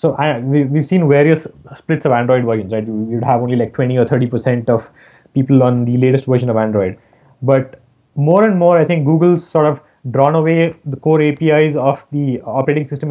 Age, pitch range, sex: 20-39, 125-145 Hz, male